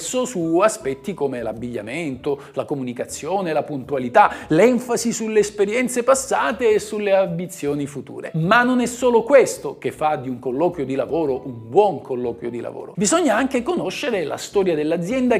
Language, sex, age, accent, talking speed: Italian, male, 50-69, native, 150 wpm